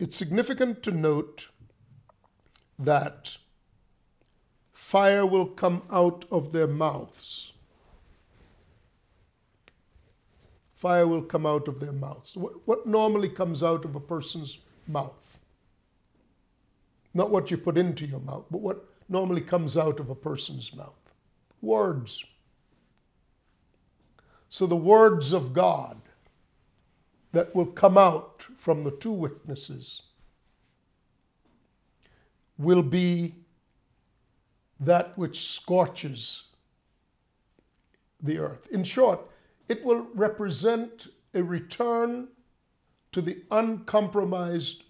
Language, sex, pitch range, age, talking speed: English, male, 150-195 Hz, 50-69, 100 wpm